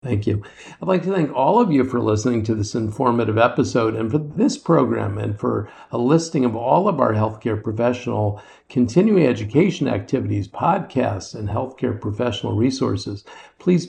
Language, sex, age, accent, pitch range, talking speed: English, male, 50-69, American, 110-145 Hz, 165 wpm